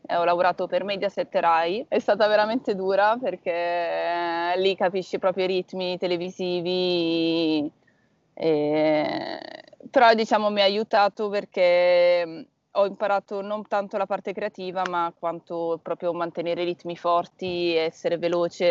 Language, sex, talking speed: Italian, female, 130 wpm